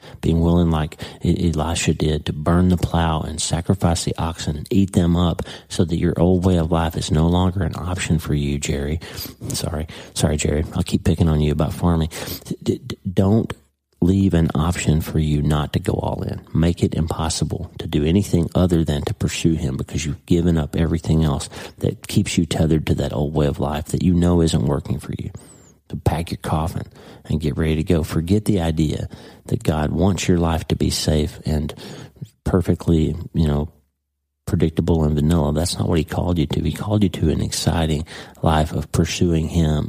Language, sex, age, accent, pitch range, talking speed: English, male, 40-59, American, 75-90 Hz, 200 wpm